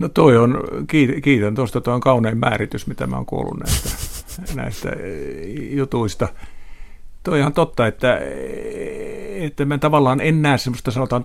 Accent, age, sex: native, 50-69, male